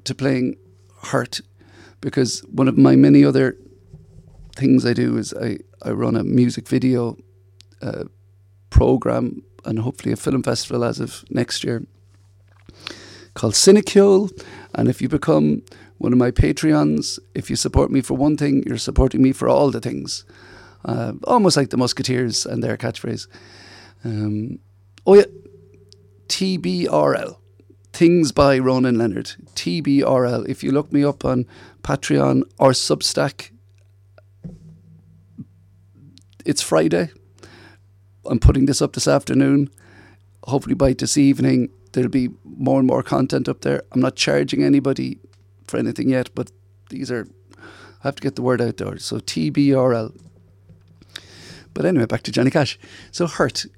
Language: English